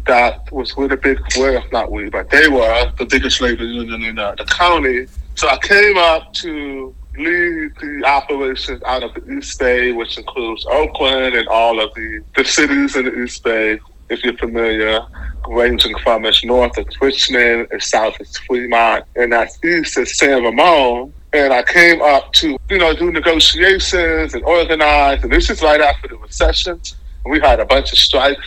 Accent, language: American, English